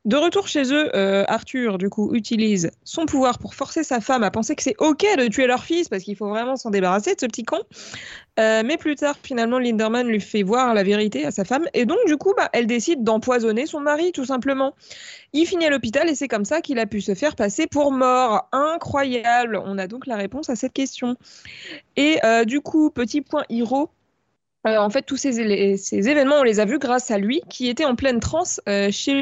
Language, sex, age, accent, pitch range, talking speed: French, female, 20-39, French, 220-295 Hz, 230 wpm